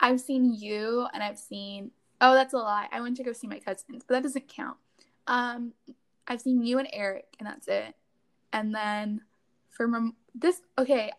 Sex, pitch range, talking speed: female, 215-260 Hz, 195 wpm